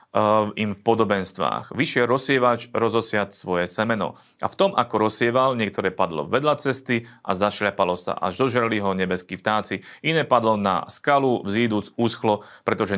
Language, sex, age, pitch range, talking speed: Slovak, male, 30-49, 100-125 Hz, 150 wpm